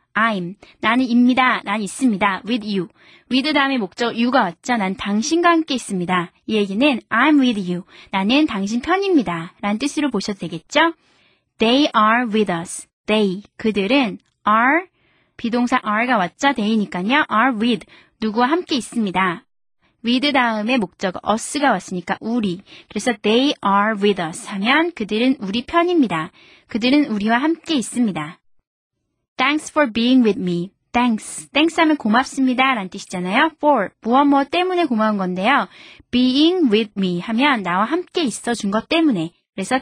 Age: 20-39